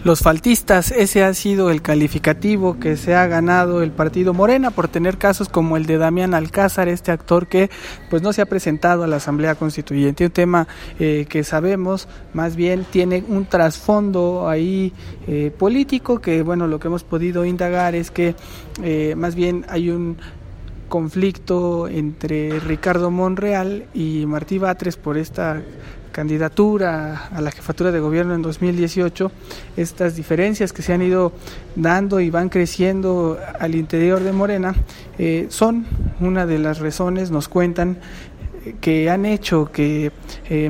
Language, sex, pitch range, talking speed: English, male, 155-180 Hz, 155 wpm